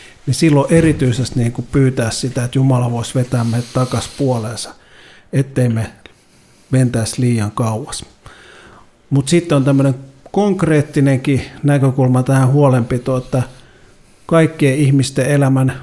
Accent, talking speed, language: native, 120 wpm, Finnish